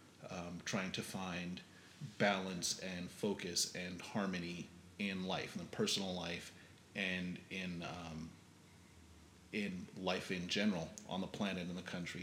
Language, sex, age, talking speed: English, male, 30-49, 135 wpm